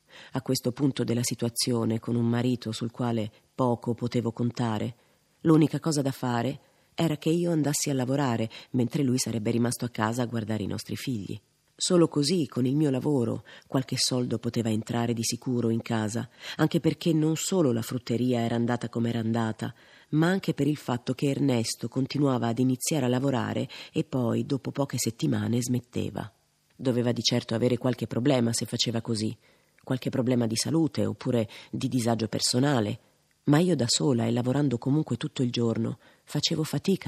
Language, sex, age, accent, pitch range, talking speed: Italian, female, 30-49, native, 115-135 Hz, 170 wpm